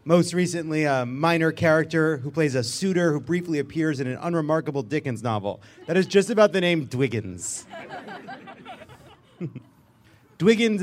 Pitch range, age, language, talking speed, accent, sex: 125-200 Hz, 30-49, English, 140 wpm, American, male